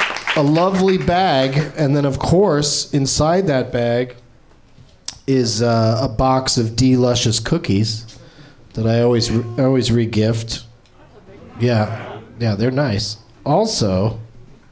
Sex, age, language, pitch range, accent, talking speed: male, 40-59, English, 120-155 Hz, American, 120 wpm